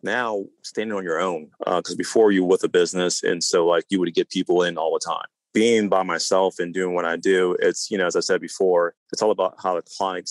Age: 30-49